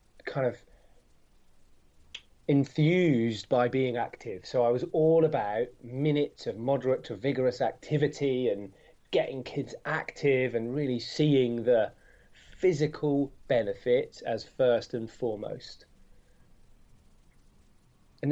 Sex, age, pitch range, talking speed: male, 20-39, 120-150 Hz, 105 wpm